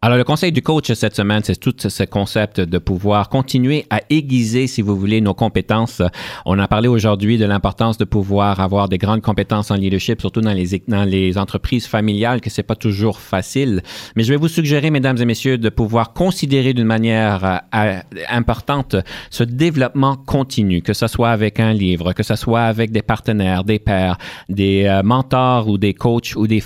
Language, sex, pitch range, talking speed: French, male, 100-125 Hz, 190 wpm